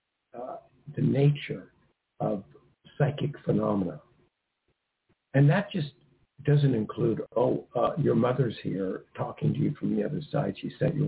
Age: 60-79